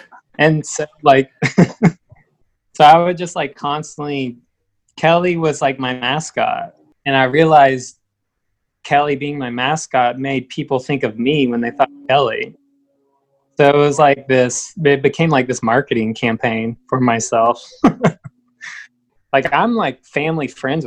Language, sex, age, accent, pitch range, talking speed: English, male, 20-39, American, 120-150 Hz, 140 wpm